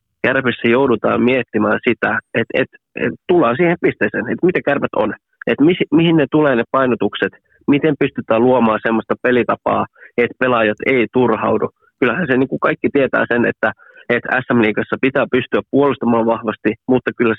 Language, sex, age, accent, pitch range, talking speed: Finnish, male, 20-39, native, 110-130 Hz, 165 wpm